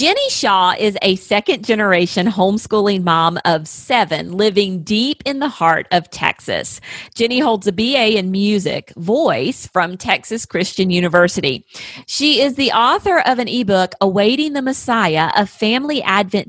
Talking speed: 145 wpm